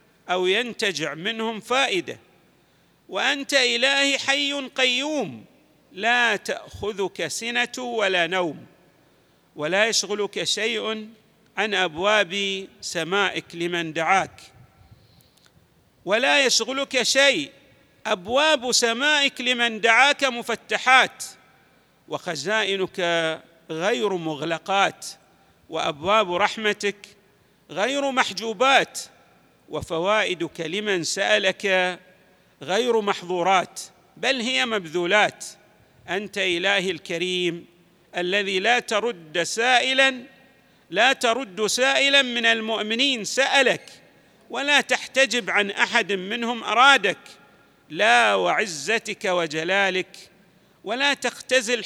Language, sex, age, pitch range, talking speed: Arabic, male, 50-69, 185-245 Hz, 80 wpm